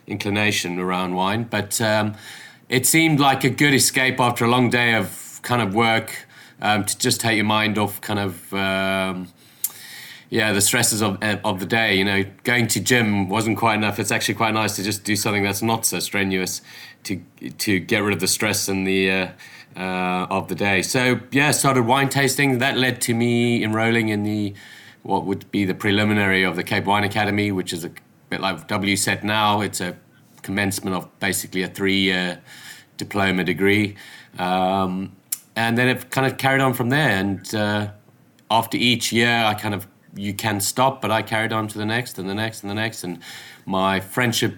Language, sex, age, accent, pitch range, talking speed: English, male, 30-49, British, 100-115 Hz, 195 wpm